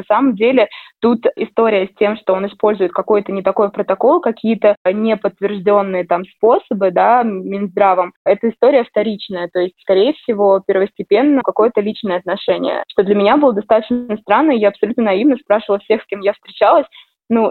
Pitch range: 195-230 Hz